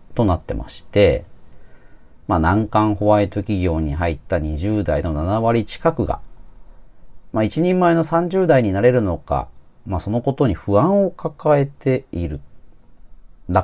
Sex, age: male, 40-59